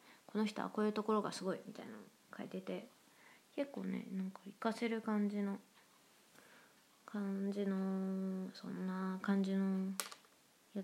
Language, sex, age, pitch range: Japanese, female, 20-39, 190-230 Hz